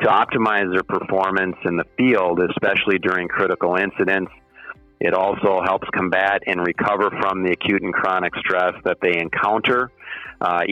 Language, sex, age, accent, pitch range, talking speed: English, male, 40-59, American, 90-95 Hz, 150 wpm